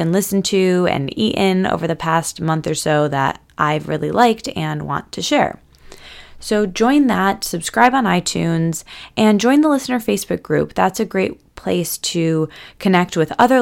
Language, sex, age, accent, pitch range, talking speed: English, female, 20-39, American, 165-240 Hz, 175 wpm